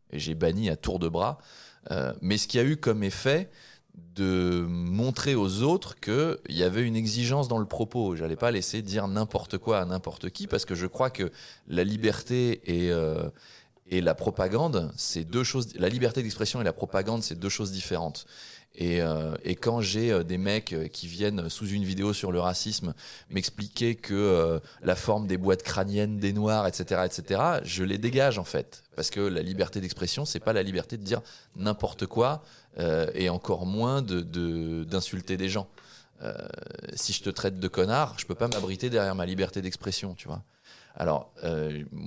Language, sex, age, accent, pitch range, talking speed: French, male, 20-39, French, 90-110 Hz, 195 wpm